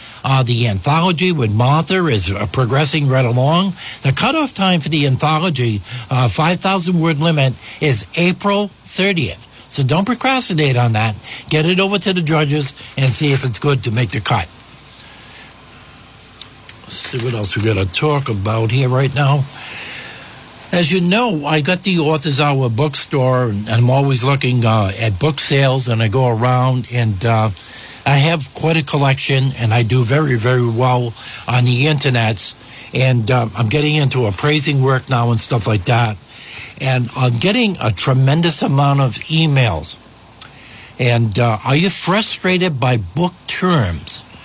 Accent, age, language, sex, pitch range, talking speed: American, 60-79, English, male, 120-155 Hz, 160 wpm